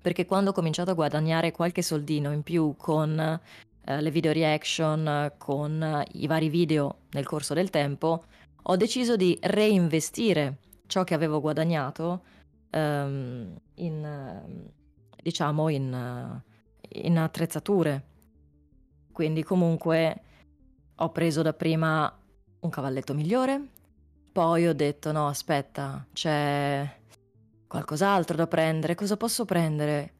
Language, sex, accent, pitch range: Italian, female, native, 140-170 Hz